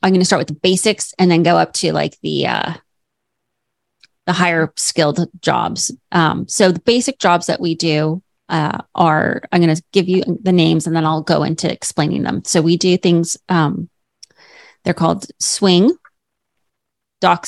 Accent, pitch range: American, 170-195 Hz